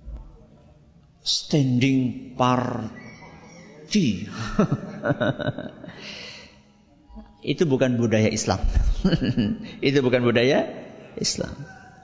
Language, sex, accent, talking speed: Indonesian, male, native, 50 wpm